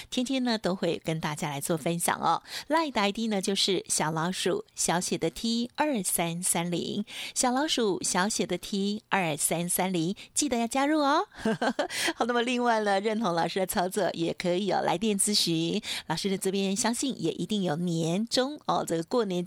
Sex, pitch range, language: female, 175-235 Hz, Chinese